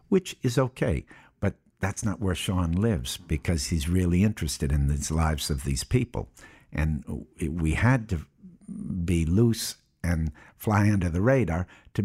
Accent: American